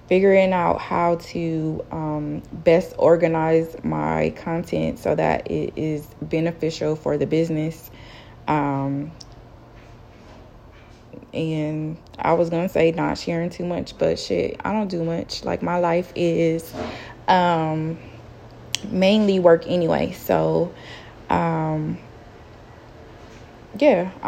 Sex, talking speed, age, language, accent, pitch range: female, 110 wpm, 20-39, English, American, 150-190 Hz